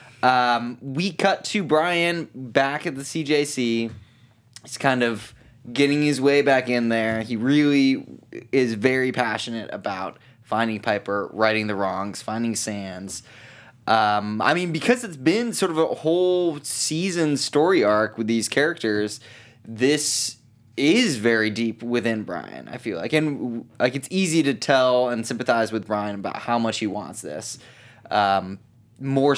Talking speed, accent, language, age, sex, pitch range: 150 wpm, American, English, 20-39, male, 110-135 Hz